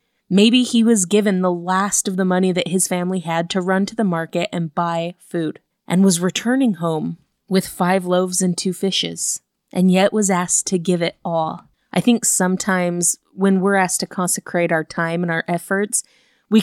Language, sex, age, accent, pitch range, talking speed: English, female, 20-39, American, 175-205 Hz, 190 wpm